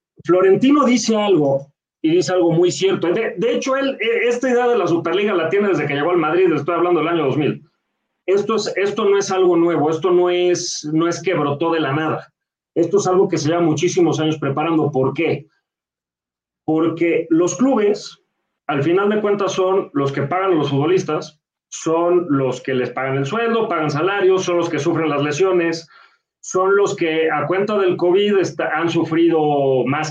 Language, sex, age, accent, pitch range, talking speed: Spanish, male, 40-59, Mexican, 155-195 Hz, 190 wpm